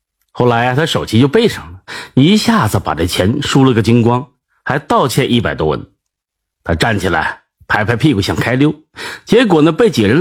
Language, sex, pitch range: Chinese, male, 125-200 Hz